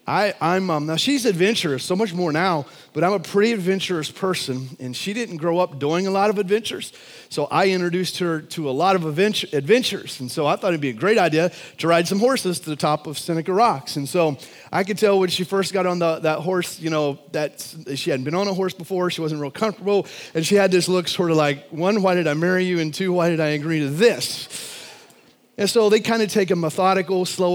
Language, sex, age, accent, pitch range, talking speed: English, male, 30-49, American, 150-190 Hz, 245 wpm